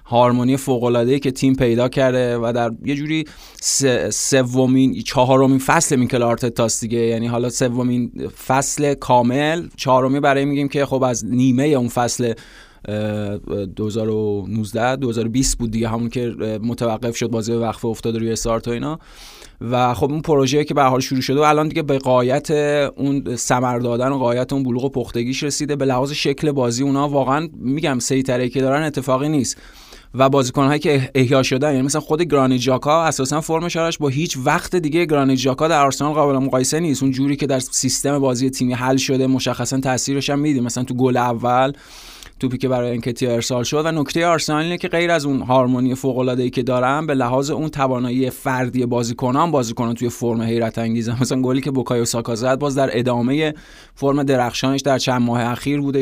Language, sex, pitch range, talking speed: Persian, male, 120-140 Hz, 185 wpm